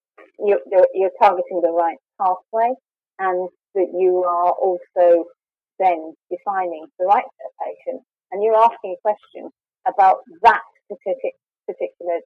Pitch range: 175-230 Hz